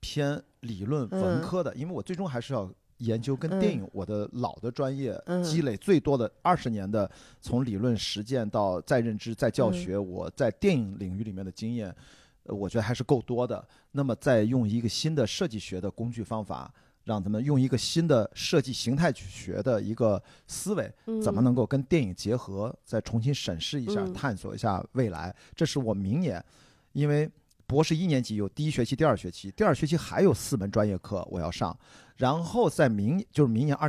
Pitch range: 105-150 Hz